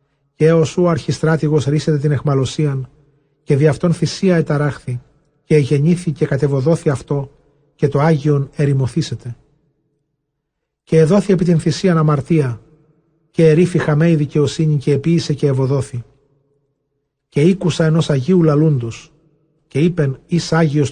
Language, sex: Greek, male